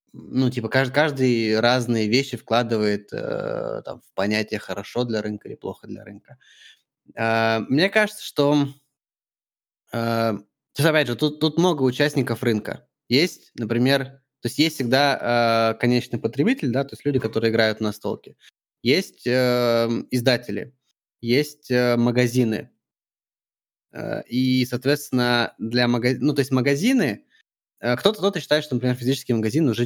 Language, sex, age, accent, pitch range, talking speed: Russian, male, 20-39, native, 115-135 Hz, 140 wpm